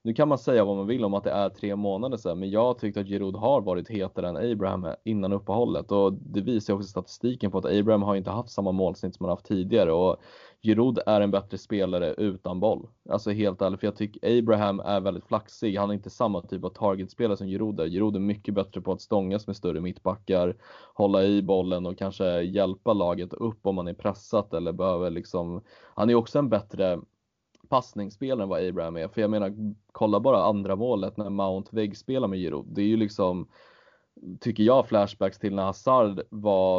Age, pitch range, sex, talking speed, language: 20-39, 95-105 Hz, male, 210 wpm, Swedish